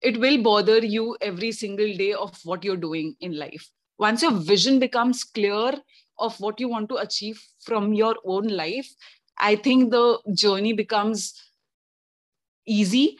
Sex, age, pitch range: female, 30-49, 200-250 Hz